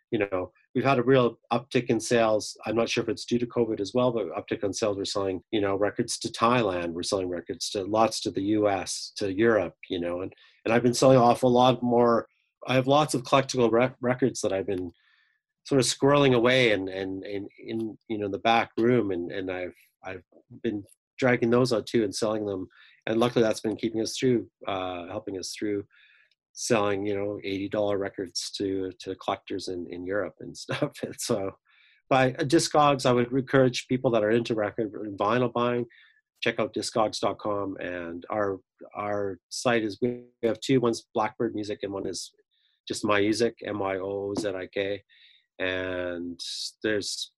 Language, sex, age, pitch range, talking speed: English, male, 30-49, 100-125 Hz, 190 wpm